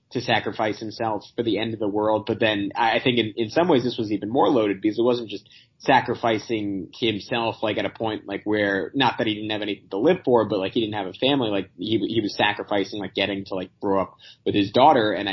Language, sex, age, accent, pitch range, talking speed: English, male, 20-39, American, 100-115 Hz, 255 wpm